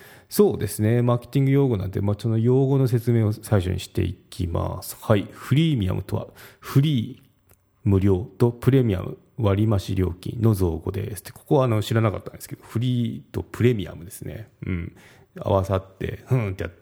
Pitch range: 95-120 Hz